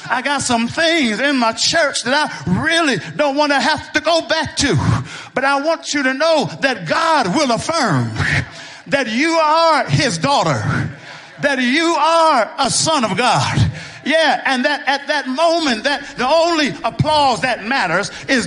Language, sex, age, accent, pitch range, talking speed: English, male, 50-69, American, 250-320 Hz, 170 wpm